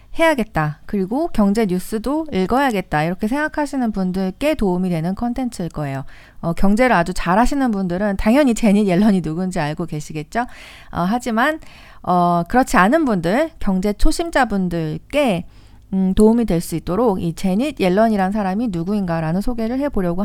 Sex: female